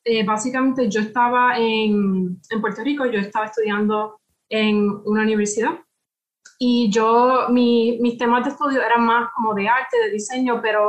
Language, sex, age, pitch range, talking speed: Spanish, female, 20-39, 210-245 Hz, 160 wpm